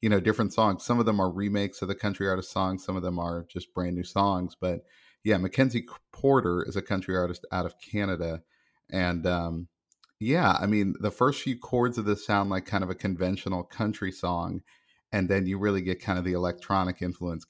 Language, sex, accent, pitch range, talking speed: English, male, American, 90-105 Hz, 215 wpm